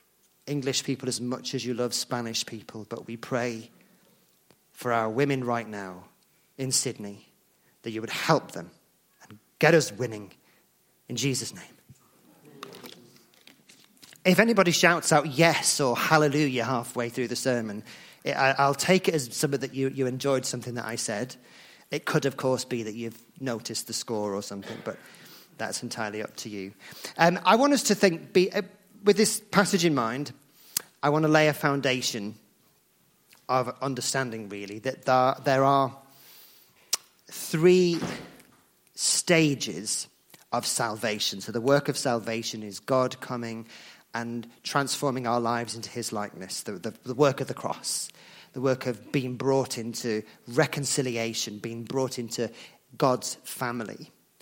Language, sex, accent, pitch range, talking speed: English, male, British, 115-145 Hz, 150 wpm